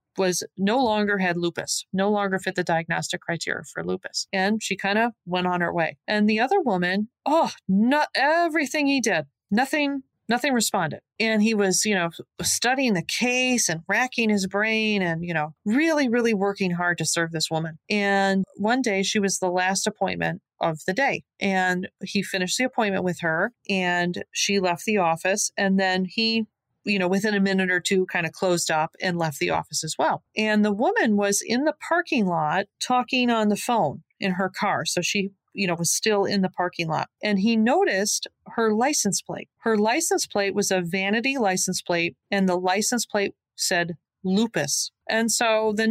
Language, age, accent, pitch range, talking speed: English, 40-59, American, 185-230 Hz, 190 wpm